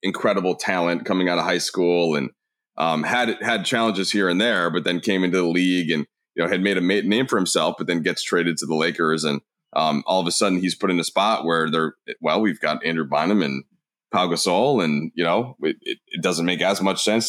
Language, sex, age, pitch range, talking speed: English, male, 20-39, 85-110 Hz, 240 wpm